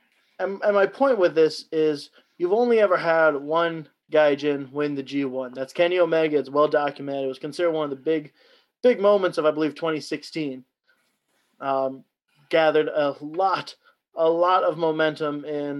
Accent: American